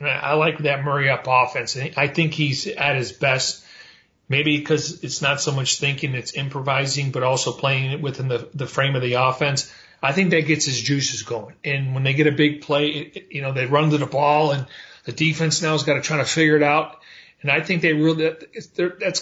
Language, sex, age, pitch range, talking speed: English, male, 40-59, 140-165 Hz, 225 wpm